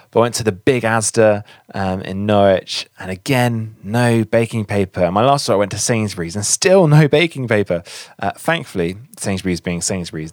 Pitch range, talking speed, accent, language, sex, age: 95-125 Hz, 190 wpm, British, English, male, 20-39